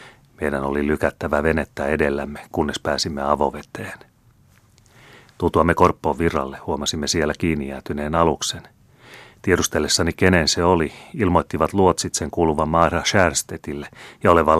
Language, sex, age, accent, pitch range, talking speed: Finnish, male, 30-49, native, 75-85 Hz, 105 wpm